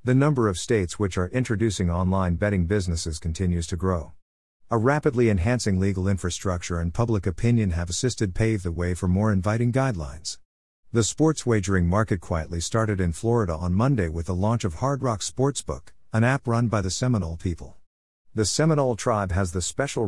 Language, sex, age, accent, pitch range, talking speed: English, male, 50-69, American, 90-120 Hz, 180 wpm